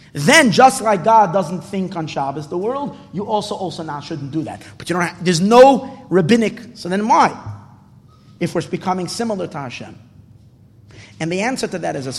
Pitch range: 115-175 Hz